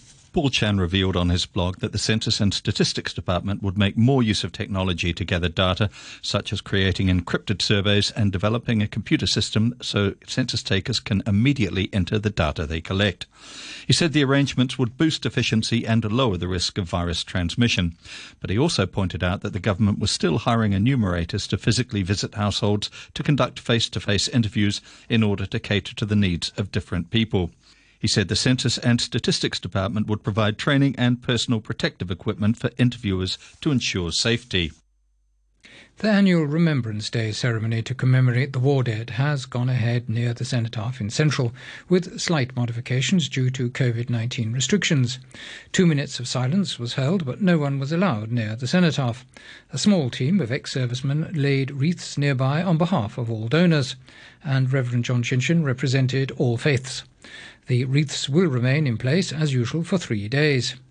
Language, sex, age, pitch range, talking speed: English, male, 50-69, 105-135 Hz, 170 wpm